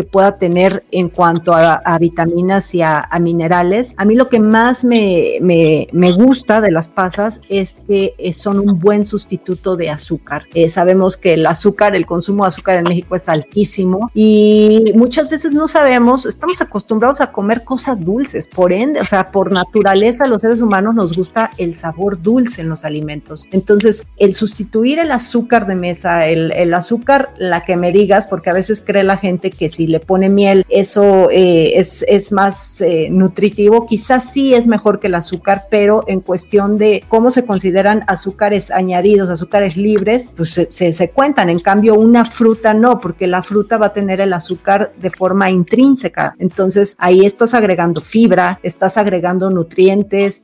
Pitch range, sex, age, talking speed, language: 180-215 Hz, female, 40-59, 180 wpm, Spanish